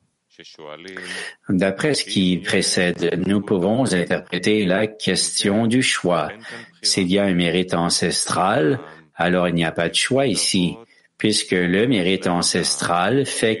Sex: male